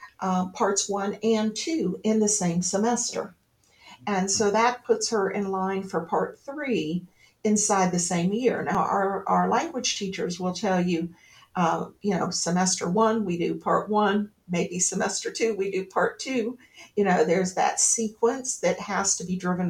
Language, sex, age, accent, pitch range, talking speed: English, female, 50-69, American, 180-220 Hz, 175 wpm